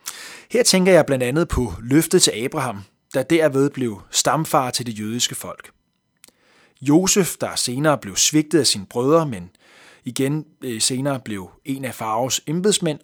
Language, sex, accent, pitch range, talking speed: Danish, male, native, 125-165 Hz, 155 wpm